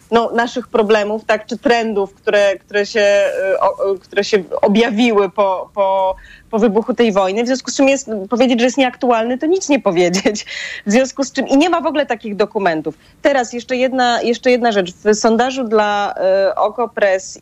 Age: 20-39